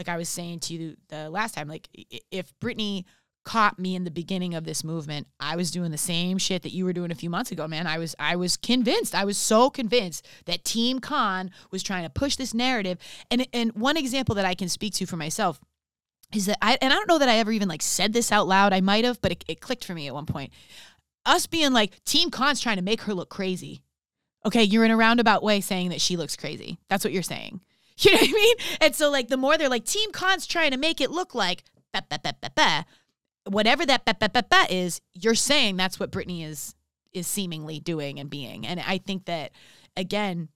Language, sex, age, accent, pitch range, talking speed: English, female, 20-39, American, 170-235 Hz, 250 wpm